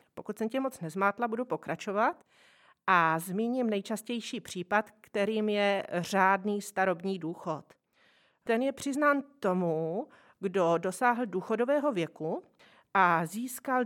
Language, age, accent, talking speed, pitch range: Czech, 40-59, native, 115 wpm, 180-240 Hz